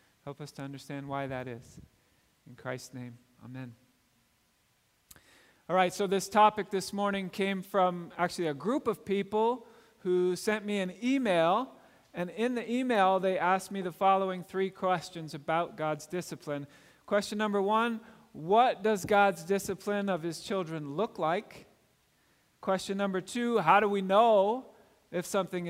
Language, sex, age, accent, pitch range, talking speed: English, male, 40-59, American, 165-215 Hz, 150 wpm